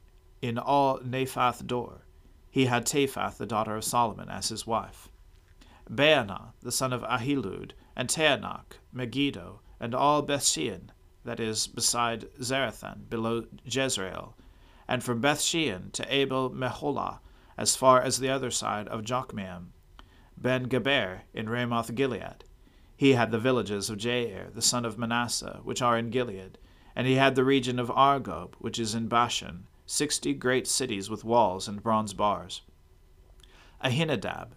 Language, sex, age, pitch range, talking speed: English, male, 40-59, 100-130 Hz, 140 wpm